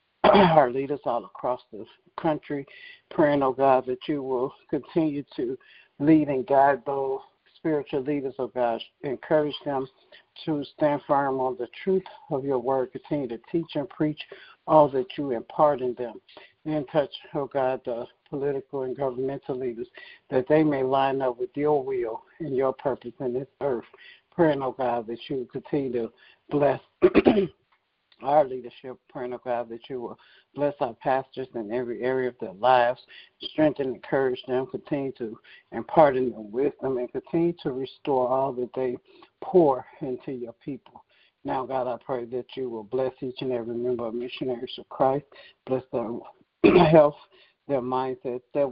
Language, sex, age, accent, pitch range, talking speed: English, male, 60-79, American, 125-150 Hz, 165 wpm